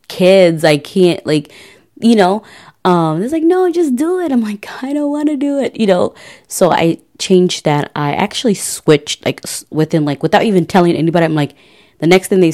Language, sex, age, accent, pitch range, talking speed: English, female, 20-39, American, 160-205 Hz, 205 wpm